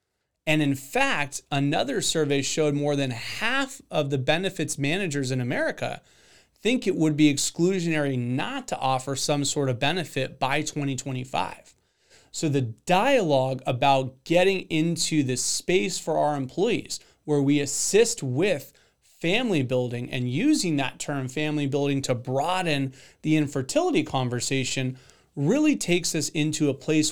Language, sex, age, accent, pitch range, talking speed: English, male, 30-49, American, 135-165 Hz, 140 wpm